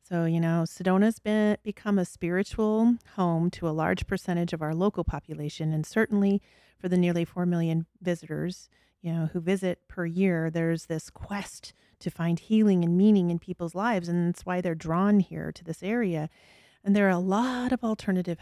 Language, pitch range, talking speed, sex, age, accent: English, 165-195 Hz, 185 wpm, female, 30-49, American